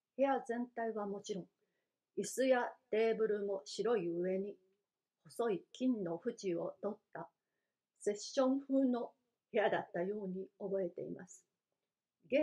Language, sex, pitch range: Japanese, female, 190-240 Hz